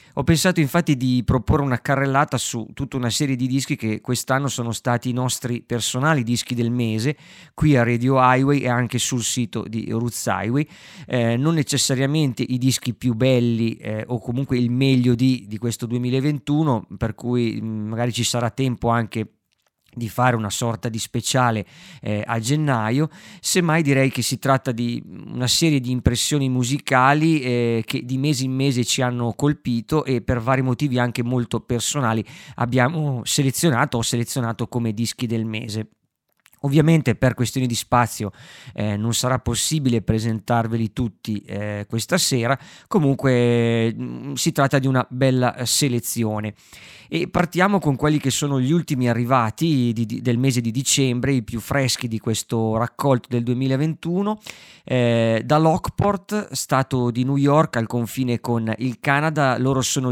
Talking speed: 160 wpm